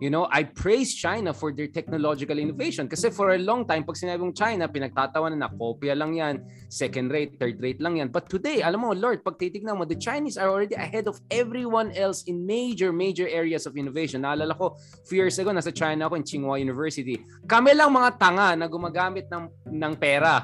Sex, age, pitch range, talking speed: male, 20-39, 155-230 Hz, 205 wpm